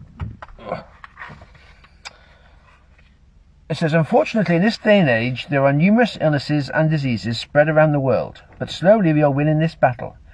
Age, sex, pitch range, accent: 50-69, male, 100-160 Hz, British